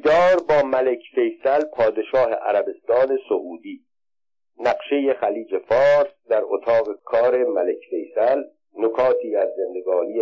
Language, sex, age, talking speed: Persian, male, 50-69, 105 wpm